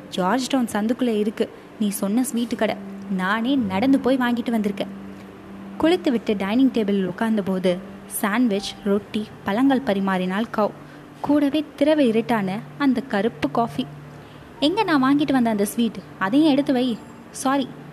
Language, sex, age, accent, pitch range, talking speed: Tamil, female, 20-39, native, 200-265 Hz, 125 wpm